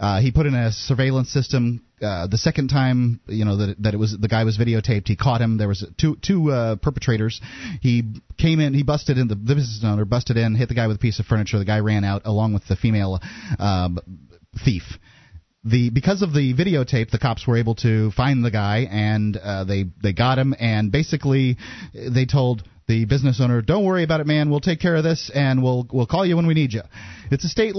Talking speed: 235 wpm